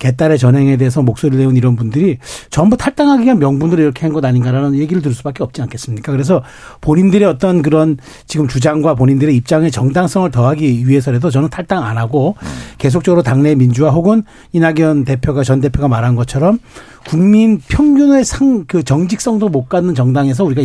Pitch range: 135-175 Hz